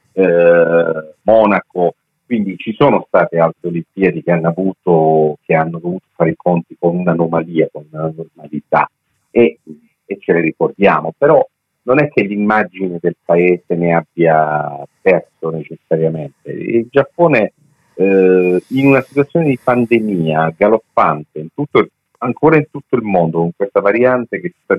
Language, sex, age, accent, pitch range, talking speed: Italian, male, 40-59, native, 85-125 Hz, 150 wpm